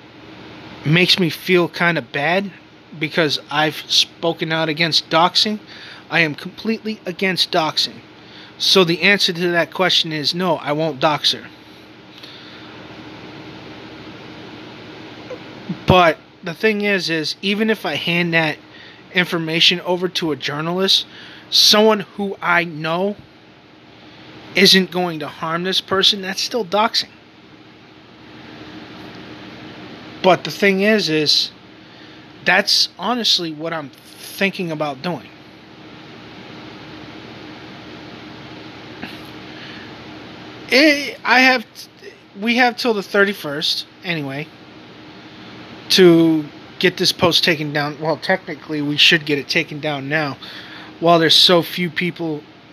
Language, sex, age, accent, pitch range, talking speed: English, male, 30-49, American, 150-190 Hz, 115 wpm